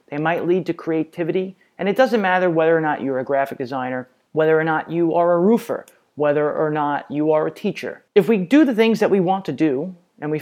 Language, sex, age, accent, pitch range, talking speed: English, male, 30-49, American, 145-185 Hz, 240 wpm